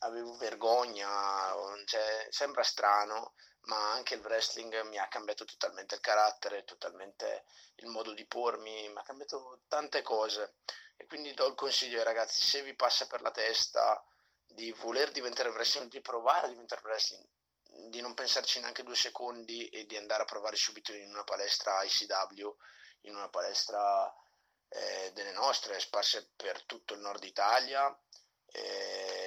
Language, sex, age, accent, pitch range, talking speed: Italian, male, 30-49, native, 105-115 Hz, 155 wpm